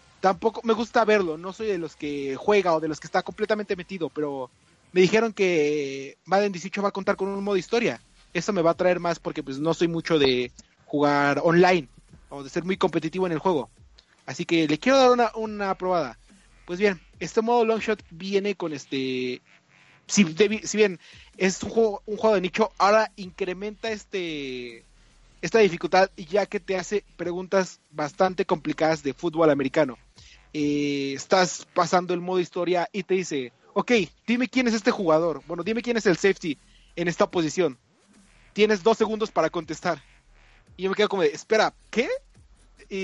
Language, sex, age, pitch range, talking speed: Spanish, male, 30-49, 160-205 Hz, 185 wpm